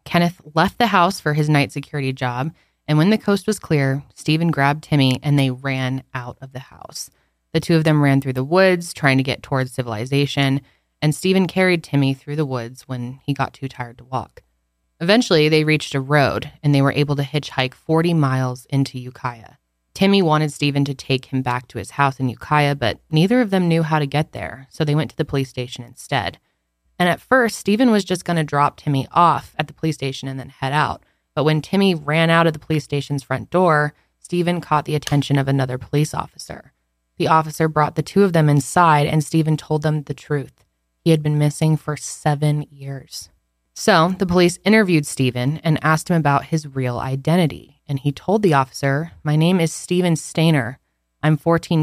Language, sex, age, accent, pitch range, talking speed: English, female, 20-39, American, 130-160 Hz, 205 wpm